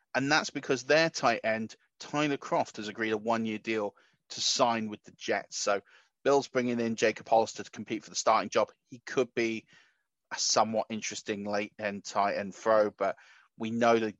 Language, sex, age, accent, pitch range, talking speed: English, male, 30-49, British, 105-120 Hz, 185 wpm